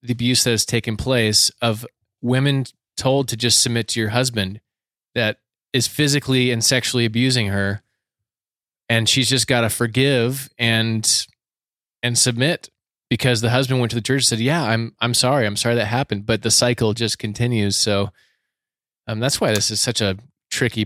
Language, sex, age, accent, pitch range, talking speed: English, male, 20-39, American, 110-130 Hz, 180 wpm